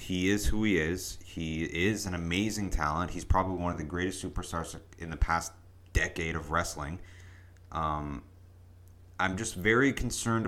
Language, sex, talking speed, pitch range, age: English, male, 160 wpm, 85-95 Hz, 30-49